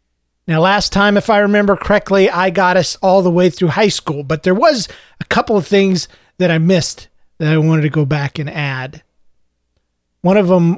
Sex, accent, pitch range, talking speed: male, American, 150-190 Hz, 205 wpm